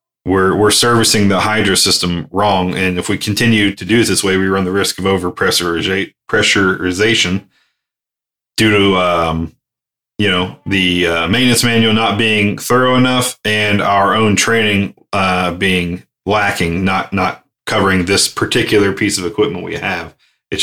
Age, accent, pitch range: 30-49, American, 95-110 Hz